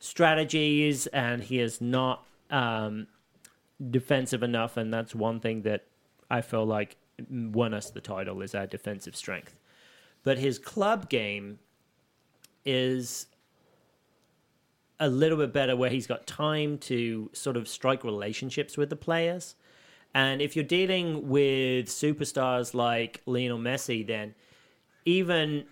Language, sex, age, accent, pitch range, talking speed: English, male, 30-49, British, 115-155 Hz, 130 wpm